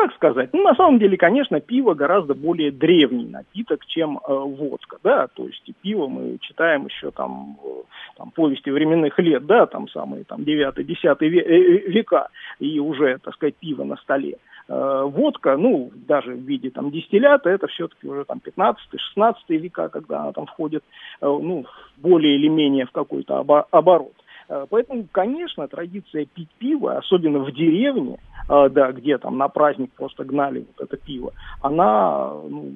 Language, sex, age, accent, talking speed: Russian, male, 40-59, native, 155 wpm